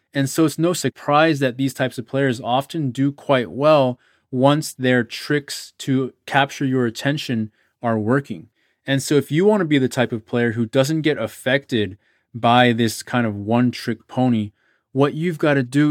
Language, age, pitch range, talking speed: English, 20-39, 115-140 Hz, 190 wpm